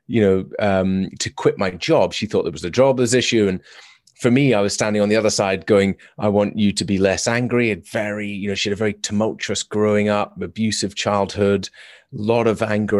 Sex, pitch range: male, 100-115 Hz